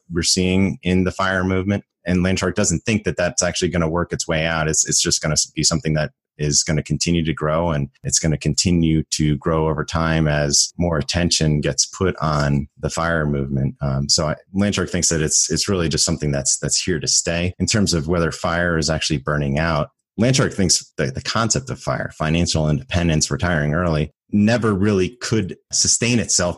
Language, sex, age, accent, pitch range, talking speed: English, male, 30-49, American, 75-90 Hz, 210 wpm